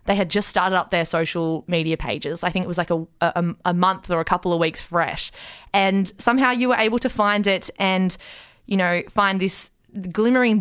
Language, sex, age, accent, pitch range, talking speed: English, female, 20-39, Australian, 170-210 Hz, 210 wpm